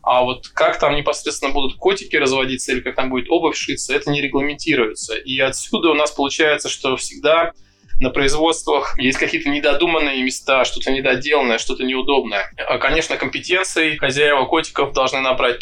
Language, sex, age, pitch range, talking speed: Russian, male, 20-39, 125-150 Hz, 155 wpm